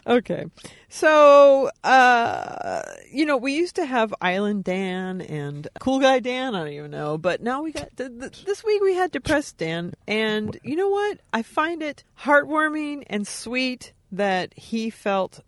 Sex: female